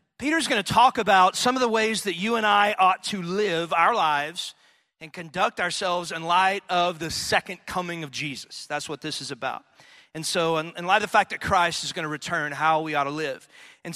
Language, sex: English, male